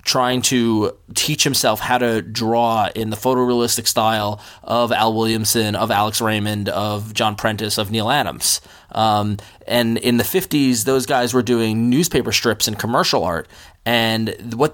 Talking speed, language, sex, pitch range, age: 160 wpm, English, male, 105-125 Hz, 20-39